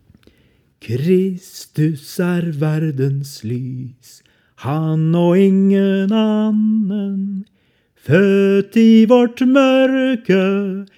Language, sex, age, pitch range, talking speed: English, male, 40-59, 115-175 Hz, 70 wpm